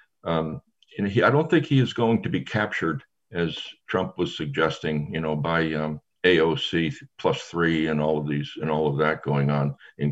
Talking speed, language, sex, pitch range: 200 wpm, English, male, 75-95 Hz